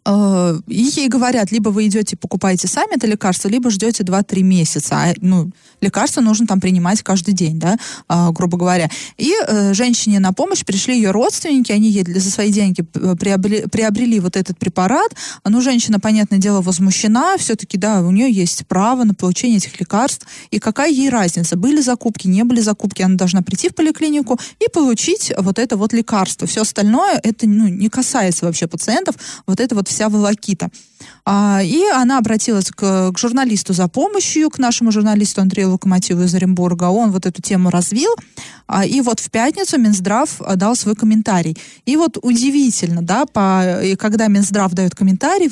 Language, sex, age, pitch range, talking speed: Russian, female, 20-39, 190-245 Hz, 165 wpm